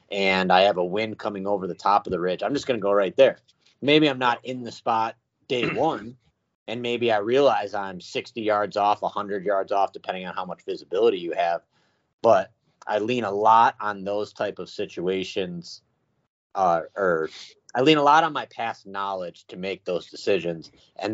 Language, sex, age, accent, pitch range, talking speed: English, male, 30-49, American, 95-120 Hz, 200 wpm